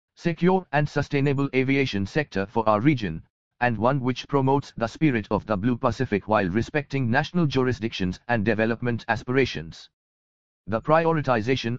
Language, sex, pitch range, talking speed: English, male, 110-135 Hz, 140 wpm